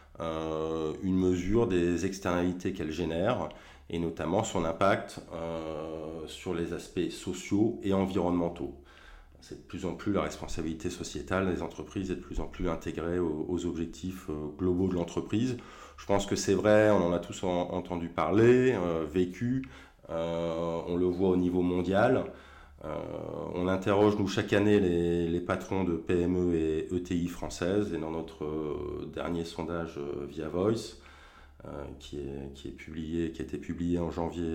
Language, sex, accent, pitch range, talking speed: French, male, French, 80-95 Hz, 165 wpm